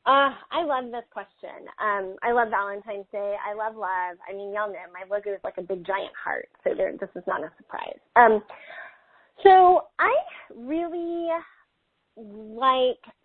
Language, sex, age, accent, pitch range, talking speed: English, female, 20-39, American, 200-270 Hz, 165 wpm